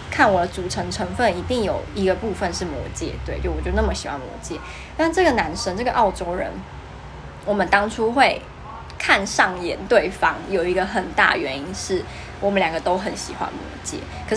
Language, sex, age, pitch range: Chinese, female, 20-39, 185-235 Hz